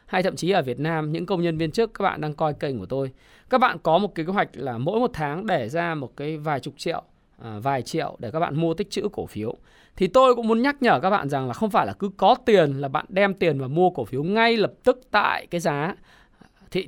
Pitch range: 125-200 Hz